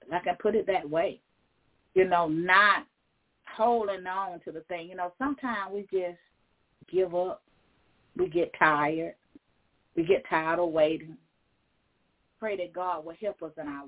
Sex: female